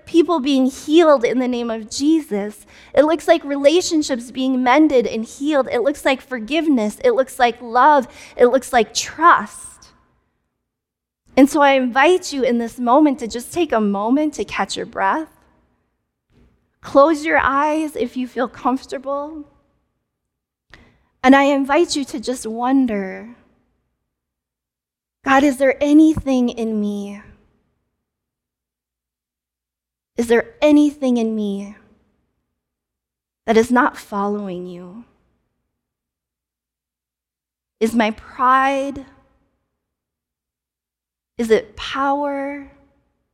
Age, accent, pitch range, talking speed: 20-39, American, 200-280 Hz, 110 wpm